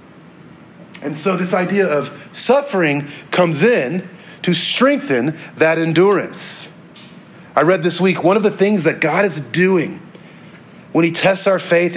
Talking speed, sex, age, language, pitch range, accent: 145 wpm, male, 40-59, English, 155-195 Hz, American